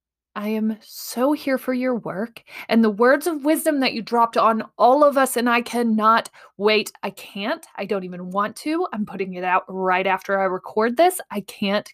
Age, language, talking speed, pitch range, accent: 20-39, English, 205 wpm, 200-240 Hz, American